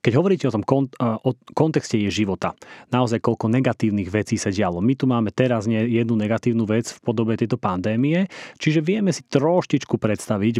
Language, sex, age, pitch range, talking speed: Slovak, male, 30-49, 110-140 Hz, 180 wpm